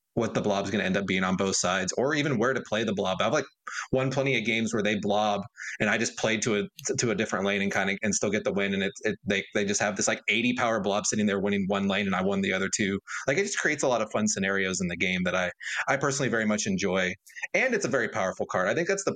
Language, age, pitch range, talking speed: English, 30-49, 100-125 Hz, 305 wpm